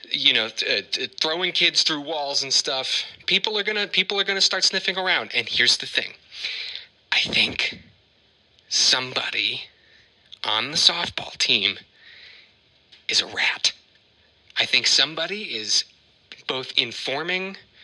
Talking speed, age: 120 wpm, 30-49